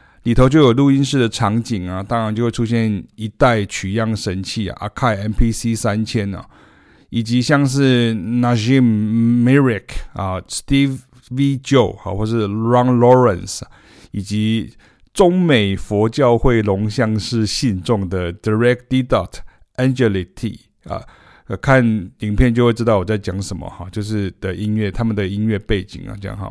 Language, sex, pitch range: Chinese, male, 100-125 Hz